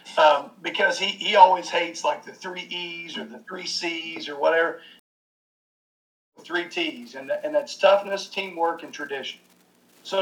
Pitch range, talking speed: 155-195 Hz, 155 wpm